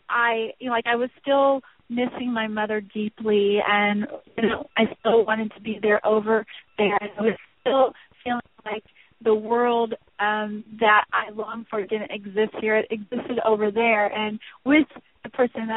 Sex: female